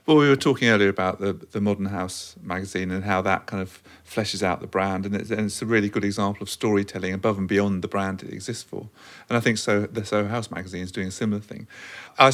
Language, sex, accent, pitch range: English, male, British, 95-110 Hz